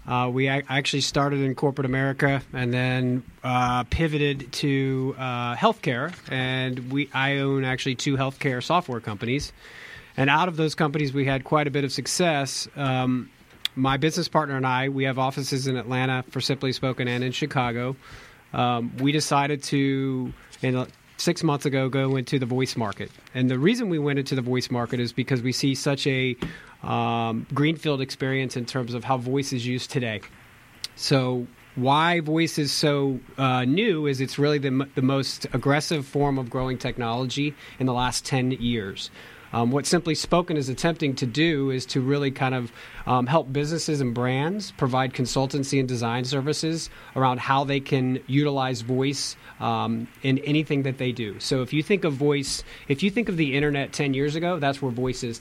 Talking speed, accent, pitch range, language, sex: 185 wpm, American, 125-145 Hz, English, male